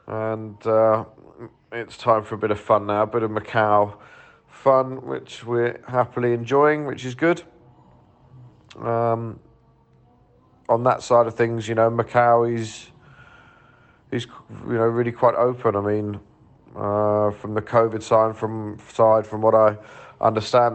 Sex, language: male, German